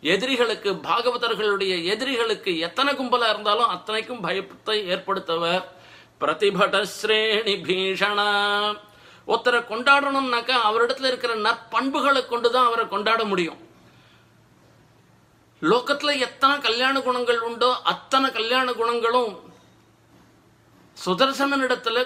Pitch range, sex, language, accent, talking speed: 200-245 Hz, male, Tamil, native, 60 wpm